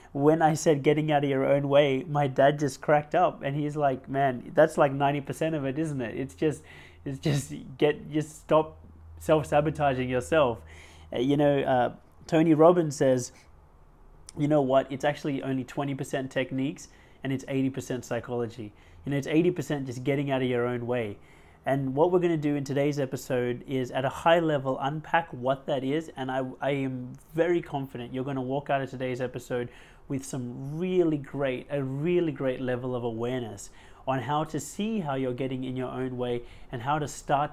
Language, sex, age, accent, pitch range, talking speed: English, male, 20-39, Australian, 125-150 Hz, 190 wpm